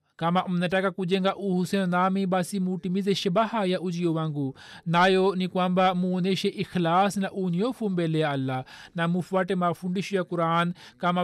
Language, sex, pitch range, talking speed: Swahili, male, 165-195 Hz, 145 wpm